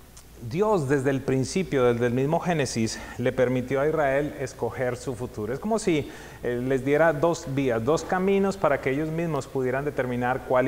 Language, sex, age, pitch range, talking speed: English, male, 30-49, 120-155 Hz, 175 wpm